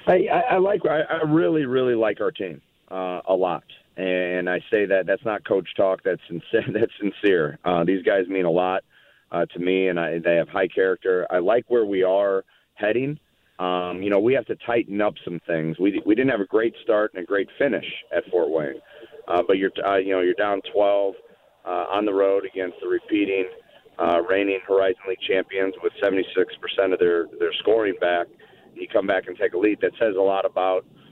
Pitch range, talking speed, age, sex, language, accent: 90-120 Hz, 215 wpm, 40-59, male, English, American